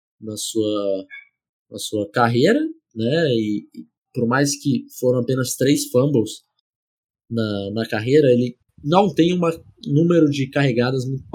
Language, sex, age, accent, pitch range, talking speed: Portuguese, male, 20-39, Brazilian, 110-145 Hz, 135 wpm